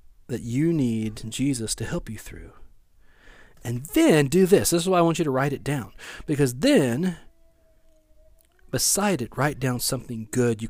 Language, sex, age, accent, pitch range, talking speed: English, male, 40-59, American, 110-150 Hz, 175 wpm